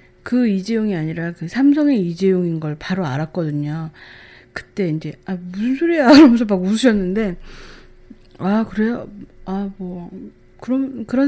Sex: female